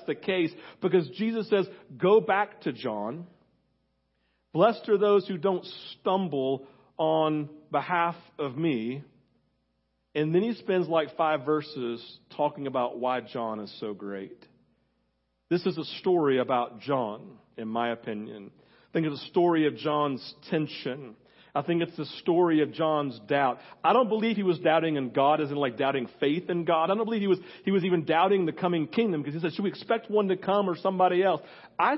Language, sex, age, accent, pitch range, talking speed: English, male, 40-59, American, 130-180 Hz, 180 wpm